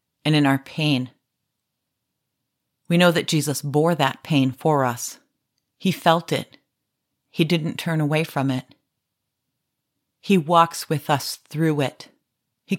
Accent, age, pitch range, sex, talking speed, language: American, 40-59, 130-160 Hz, female, 135 wpm, English